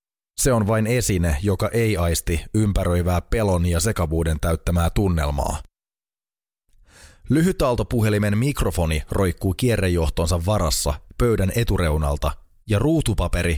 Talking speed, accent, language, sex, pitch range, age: 95 wpm, native, Finnish, male, 85-110 Hz, 20-39